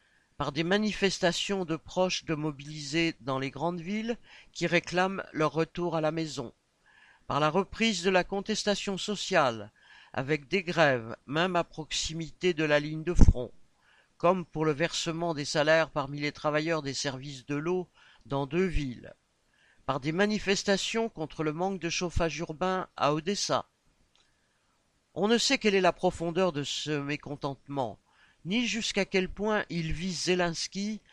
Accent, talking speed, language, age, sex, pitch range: French, 155 wpm, French, 50-69, male, 150-190 Hz